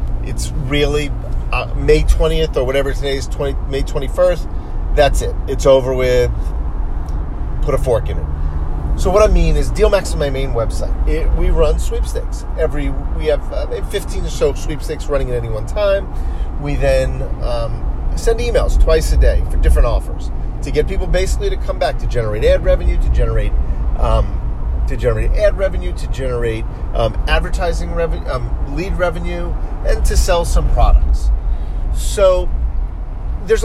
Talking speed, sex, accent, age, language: 165 wpm, male, American, 40-59, English